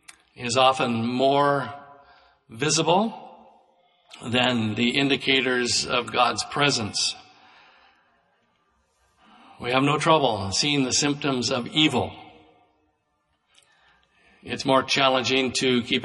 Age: 50-69